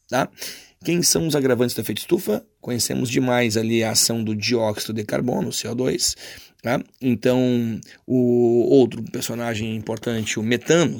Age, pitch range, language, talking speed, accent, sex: 30-49, 115-135 Hz, Portuguese, 140 wpm, Brazilian, male